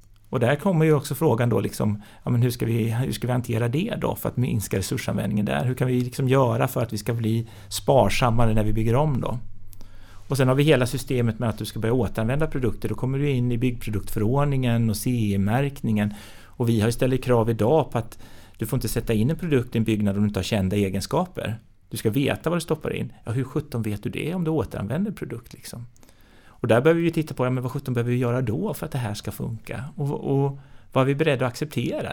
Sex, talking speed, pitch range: male, 245 wpm, 110-150 Hz